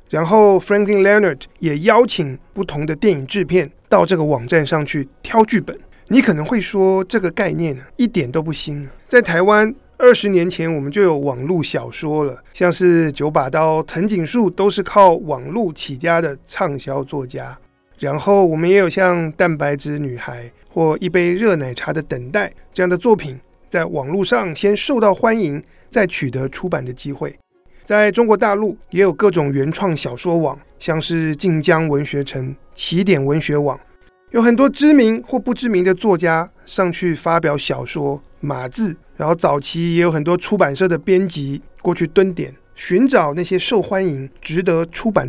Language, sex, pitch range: Chinese, male, 145-200 Hz